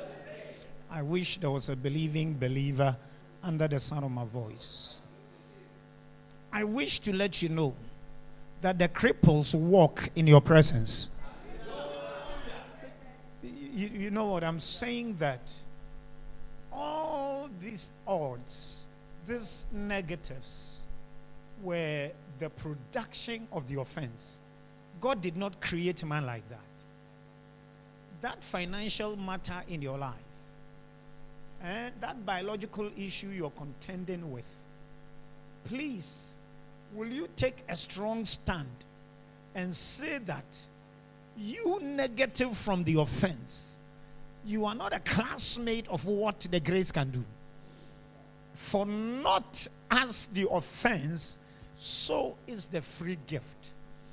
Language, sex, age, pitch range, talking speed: English, male, 50-69, 145-210 Hz, 110 wpm